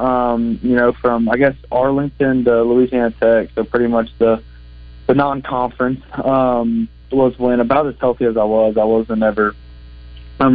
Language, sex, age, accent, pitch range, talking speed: English, male, 20-39, American, 105-125 Hz, 170 wpm